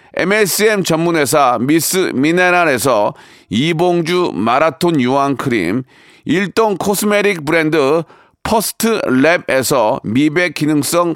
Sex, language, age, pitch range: male, Korean, 40-59, 170-220 Hz